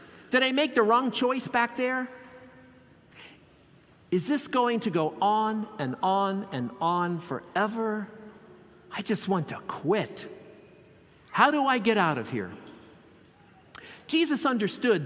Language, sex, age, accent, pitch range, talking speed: English, male, 50-69, American, 175-230 Hz, 130 wpm